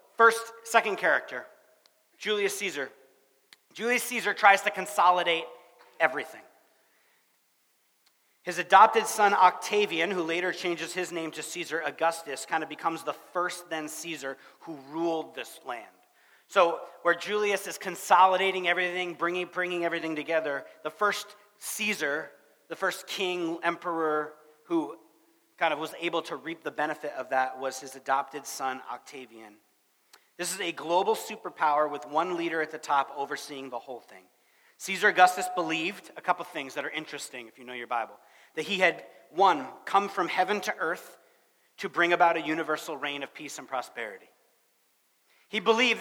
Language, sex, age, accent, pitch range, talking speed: English, male, 40-59, American, 155-190 Hz, 155 wpm